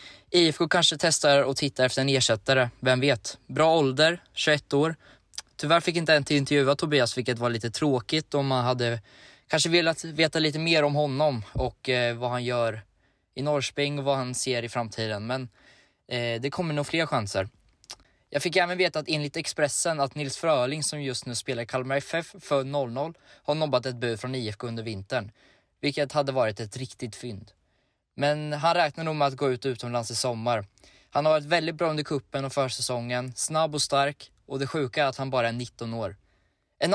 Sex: male